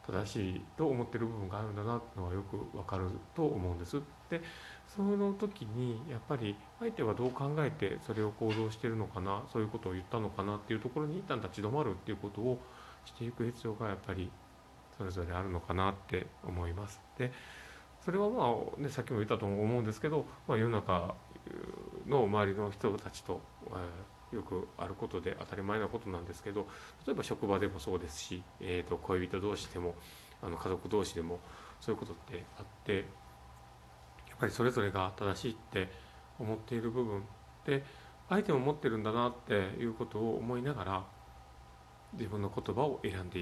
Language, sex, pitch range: Japanese, male, 95-125 Hz